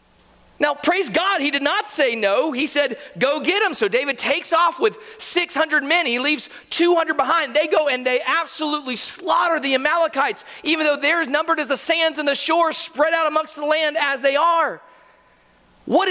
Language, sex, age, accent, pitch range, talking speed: English, male, 40-59, American, 280-345 Hz, 195 wpm